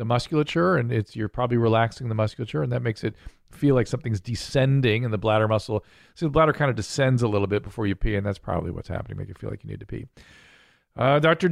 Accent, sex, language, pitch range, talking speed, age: American, male, English, 100-130 Hz, 250 wpm, 40-59